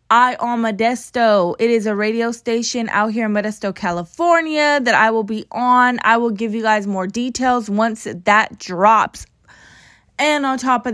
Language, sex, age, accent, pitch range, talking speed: English, female, 20-39, American, 200-250 Hz, 175 wpm